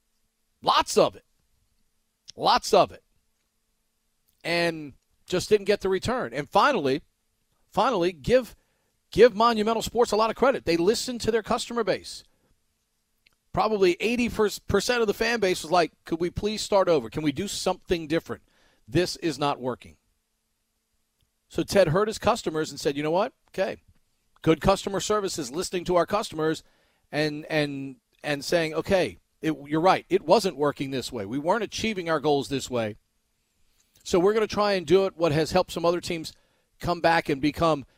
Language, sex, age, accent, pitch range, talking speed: English, male, 40-59, American, 145-200 Hz, 170 wpm